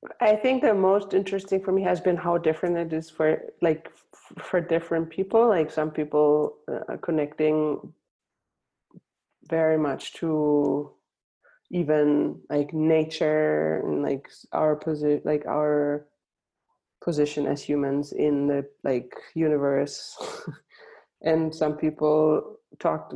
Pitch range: 145-170 Hz